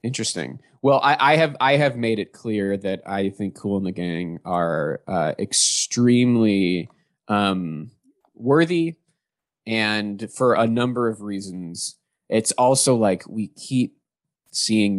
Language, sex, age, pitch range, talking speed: English, male, 20-39, 95-115 Hz, 135 wpm